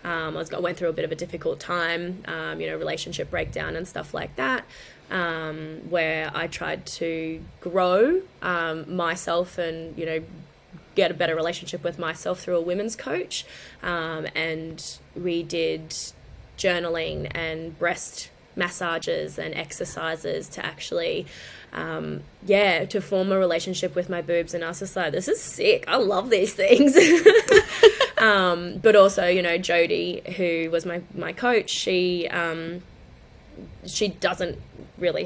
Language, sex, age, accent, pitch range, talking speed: English, female, 20-39, Australian, 160-190 Hz, 155 wpm